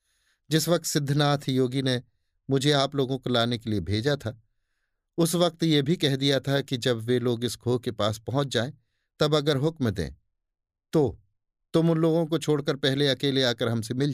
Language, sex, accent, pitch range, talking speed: Hindi, male, native, 105-145 Hz, 195 wpm